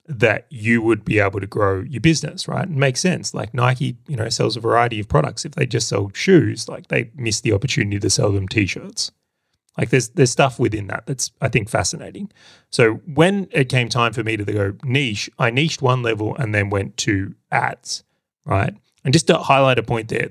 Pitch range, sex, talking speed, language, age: 105-140 Hz, male, 215 wpm, English, 30-49